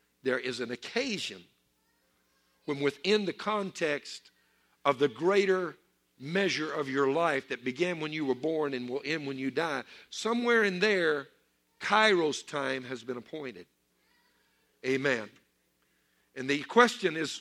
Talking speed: 140 wpm